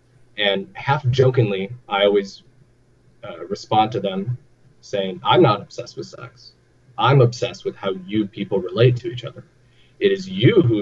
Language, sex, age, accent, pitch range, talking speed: English, male, 20-39, American, 105-130 Hz, 160 wpm